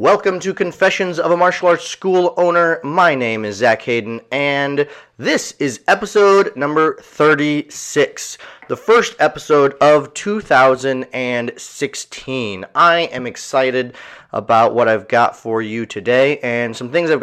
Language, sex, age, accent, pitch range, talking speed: English, male, 30-49, American, 125-160 Hz, 135 wpm